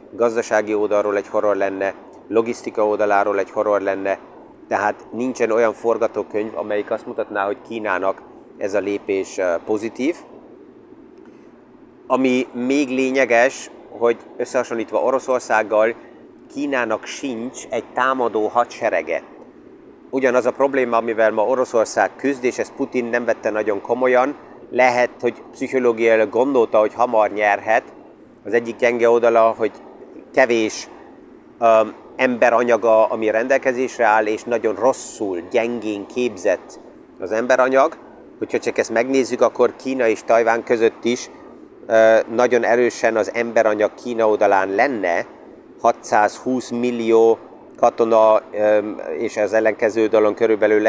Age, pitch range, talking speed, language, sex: 30-49, 110-125 Hz, 115 wpm, Hungarian, male